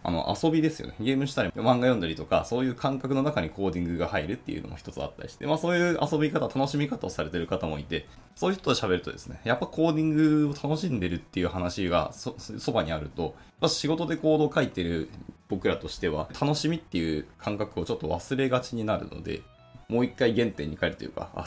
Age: 20-39